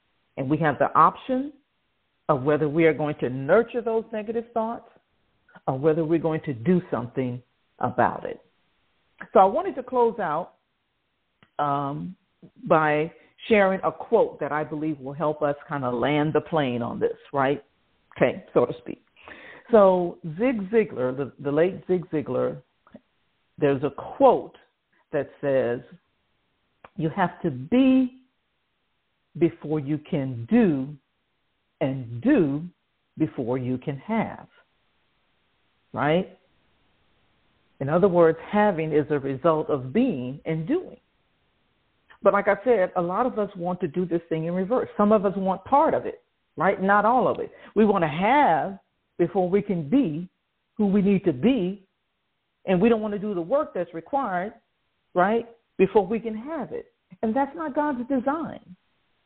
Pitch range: 150-225 Hz